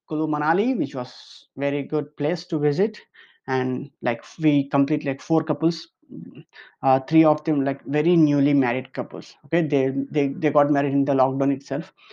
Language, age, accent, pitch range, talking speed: English, 20-39, Indian, 140-160 Hz, 170 wpm